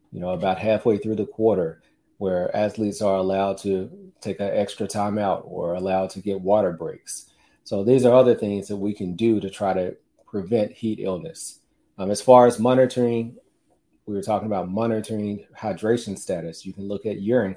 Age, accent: 30-49, American